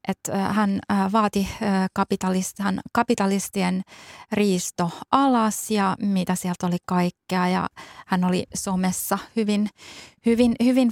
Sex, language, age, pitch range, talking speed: female, Finnish, 20-39, 195-220 Hz, 95 wpm